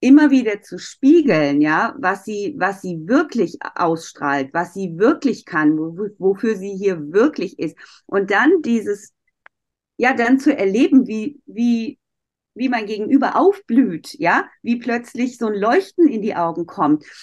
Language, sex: German, female